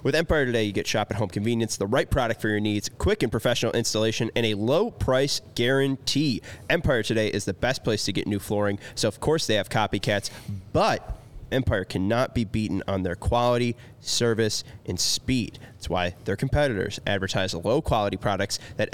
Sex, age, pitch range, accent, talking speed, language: male, 20-39, 100-125 Hz, American, 185 wpm, English